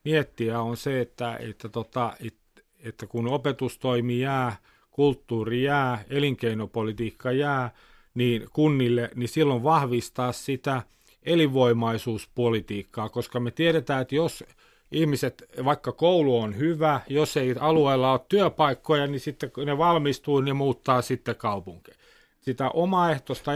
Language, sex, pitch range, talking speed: Finnish, male, 125-150 Hz, 120 wpm